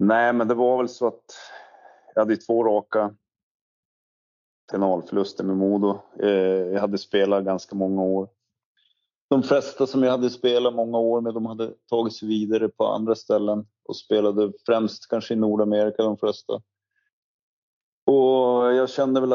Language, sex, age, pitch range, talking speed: Swedish, male, 30-49, 100-115 Hz, 150 wpm